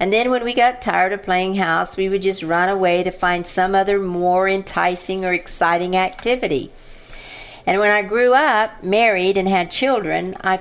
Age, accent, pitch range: 50-69, American, 175-210 Hz